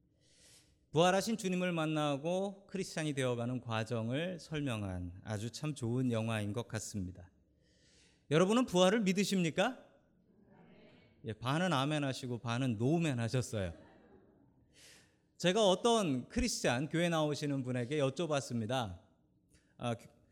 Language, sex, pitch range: Korean, male, 120-185 Hz